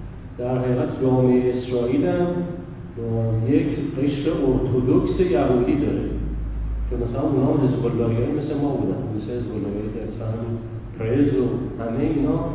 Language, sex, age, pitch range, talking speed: Persian, male, 40-59, 115-145 Hz, 110 wpm